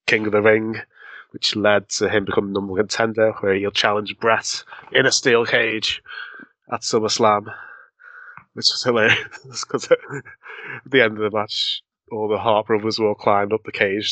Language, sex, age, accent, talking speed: English, male, 20-39, British, 175 wpm